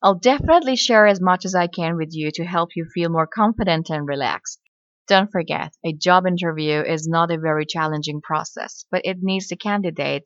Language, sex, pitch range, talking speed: Persian, female, 160-220 Hz, 200 wpm